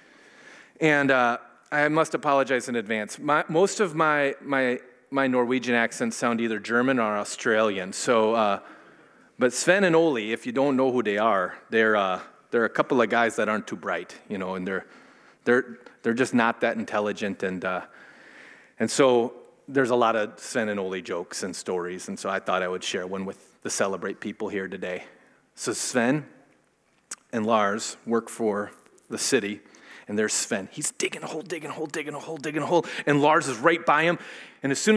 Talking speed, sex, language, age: 195 wpm, male, English, 30-49